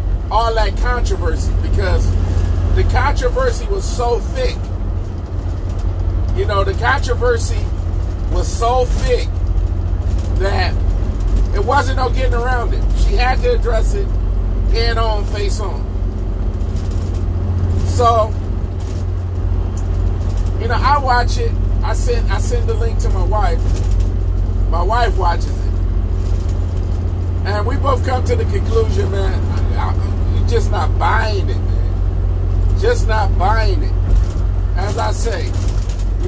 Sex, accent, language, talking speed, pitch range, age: male, American, English, 120 wpm, 90-95 Hz, 40-59